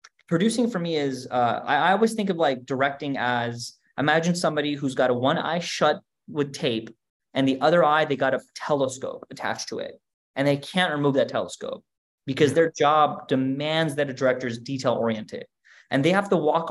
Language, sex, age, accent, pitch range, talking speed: English, male, 20-39, American, 125-155 Hz, 200 wpm